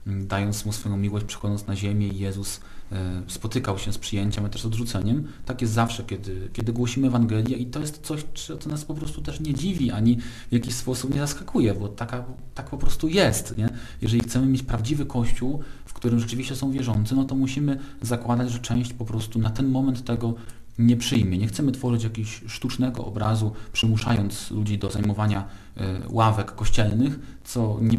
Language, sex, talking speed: Polish, male, 180 wpm